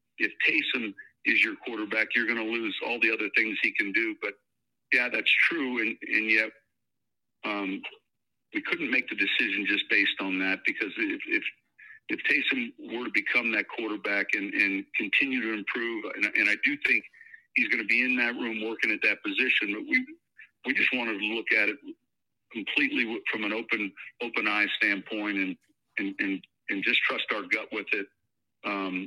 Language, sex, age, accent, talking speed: English, male, 50-69, American, 190 wpm